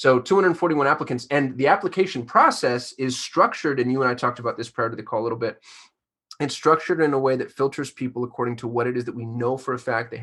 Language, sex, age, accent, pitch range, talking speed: English, male, 20-39, American, 110-125 Hz, 250 wpm